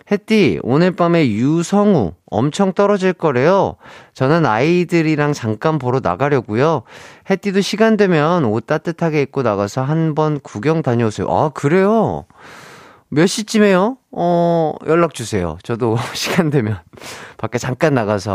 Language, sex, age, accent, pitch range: Korean, male, 30-49, native, 125-195 Hz